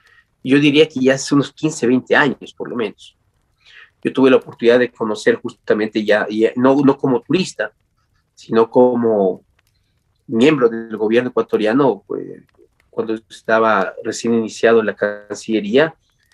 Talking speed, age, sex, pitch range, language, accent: 145 wpm, 30-49, male, 110-130 Hz, Spanish, Mexican